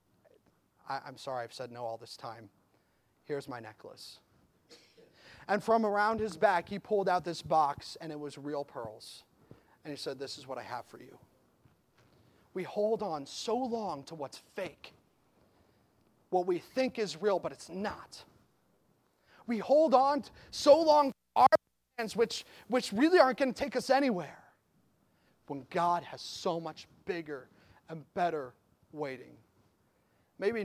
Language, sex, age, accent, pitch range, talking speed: English, male, 30-49, American, 130-185 Hz, 155 wpm